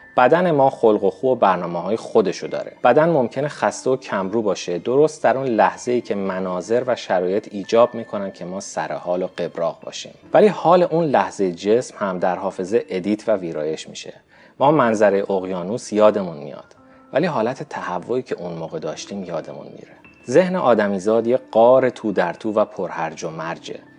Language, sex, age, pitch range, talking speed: Persian, male, 30-49, 95-150 Hz, 180 wpm